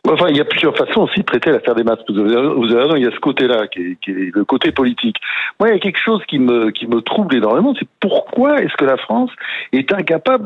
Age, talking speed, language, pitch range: 60-79, 270 wpm, French, 140-235 Hz